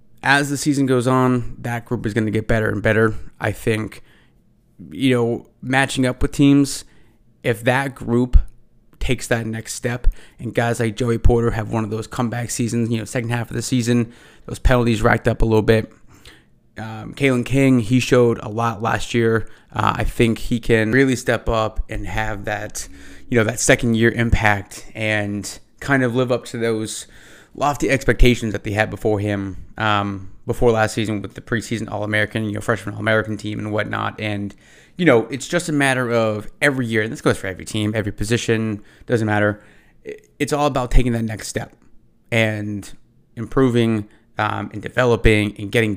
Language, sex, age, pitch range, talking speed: English, male, 20-39, 110-125 Hz, 190 wpm